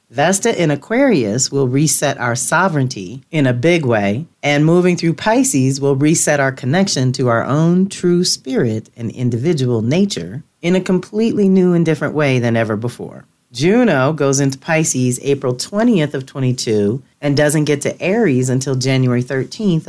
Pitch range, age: 125-170 Hz, 40-59